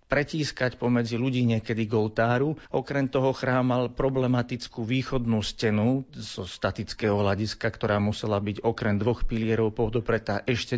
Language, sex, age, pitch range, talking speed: Slovak, male, 40-59, 105-120 Hz, 130 wpm